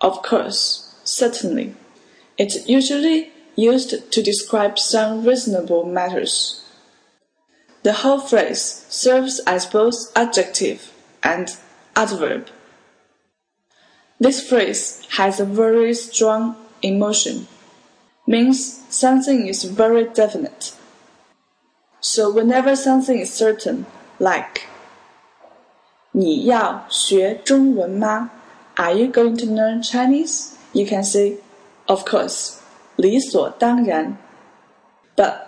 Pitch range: 200-250 Hz